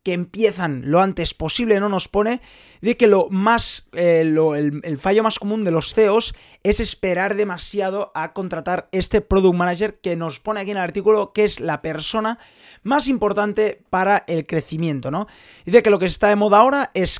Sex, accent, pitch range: male, Spanish, 175-220 Hz